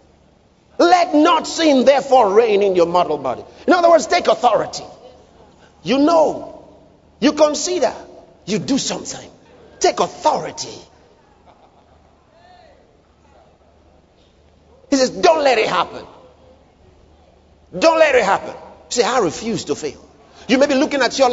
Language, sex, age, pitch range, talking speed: English, male, 50-69, 220-330 Hz, 125 wpm